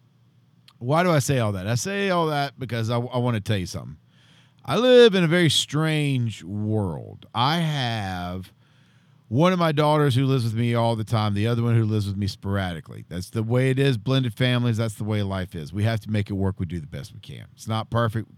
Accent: American